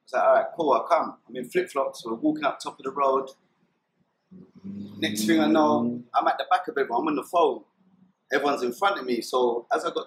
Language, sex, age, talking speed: English, male, 30-49, 250 wpm